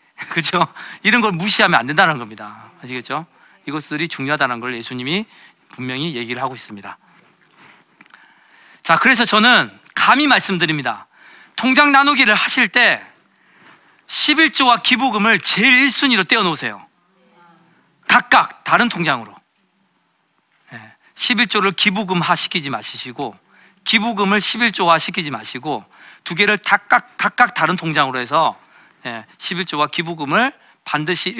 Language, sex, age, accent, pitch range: Korean, male, 40-59, native, 145-210 Hz